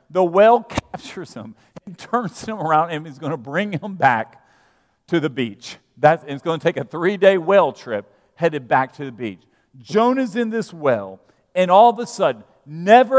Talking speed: 190 wpm